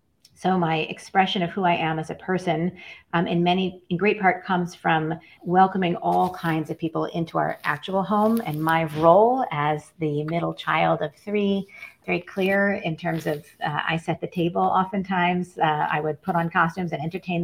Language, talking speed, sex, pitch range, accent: English, 190 wpm, female, 165-190 Hz, American